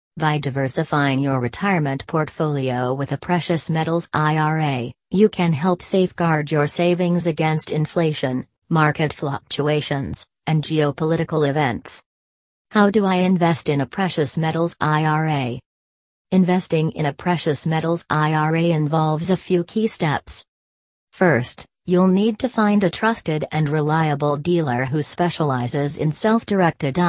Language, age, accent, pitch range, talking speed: English, 40-59, American, 145-175 Hz, 125 wpm